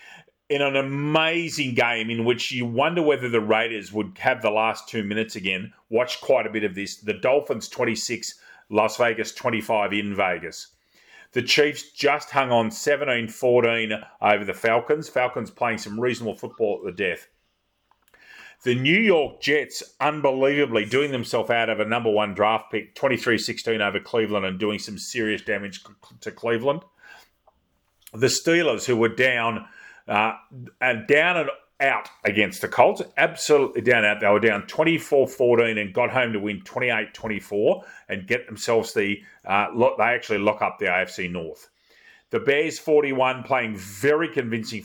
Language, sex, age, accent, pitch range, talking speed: English, male, 30-49, Australian, 105-135 Hz, 160 wpm